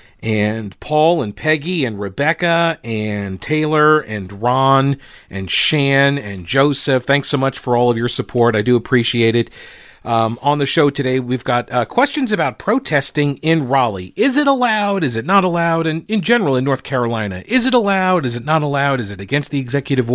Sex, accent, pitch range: male, American, 110-155 Hz